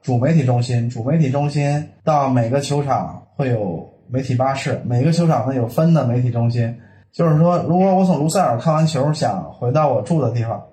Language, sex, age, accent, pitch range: Chinese, male, 20-39, native, 120-145 Hz